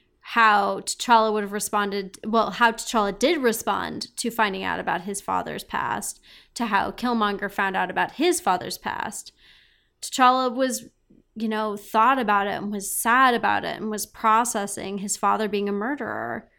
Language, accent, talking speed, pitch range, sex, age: English, American, 165 wpm, 200-235 Hz, female, 20-39